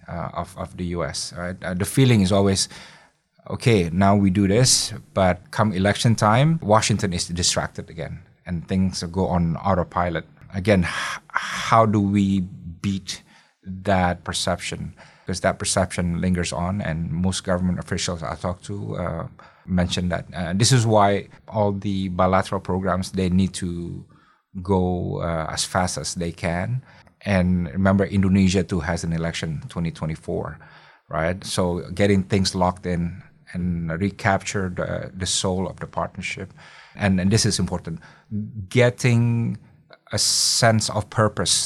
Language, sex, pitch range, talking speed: English, male, 90-105 Hz, 145 wpm